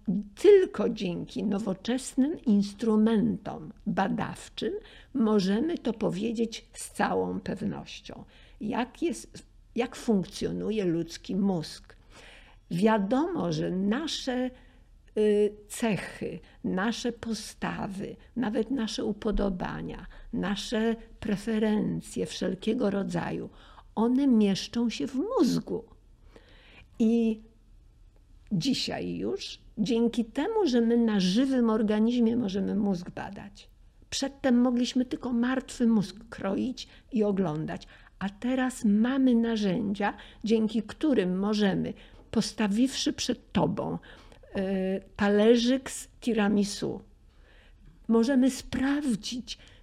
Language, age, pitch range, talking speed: Polish, 60-79, 205-250 Hz, 85 wpm